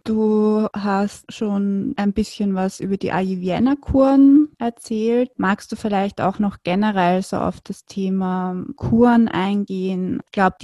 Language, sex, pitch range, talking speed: German, female, 185-225 Hz, 135 wpm